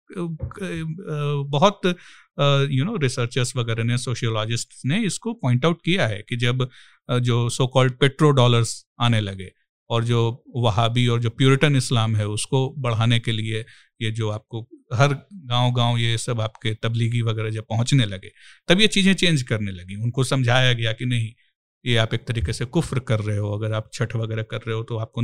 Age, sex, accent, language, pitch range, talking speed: 50-69, male, native, Hindi, 115-145 Hz, 180 wpm